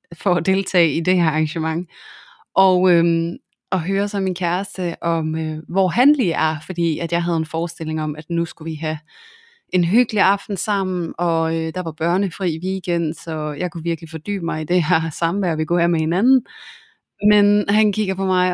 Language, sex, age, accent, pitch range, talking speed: Danish, female, 20-39, native, 160-185 Hz, 200 wpm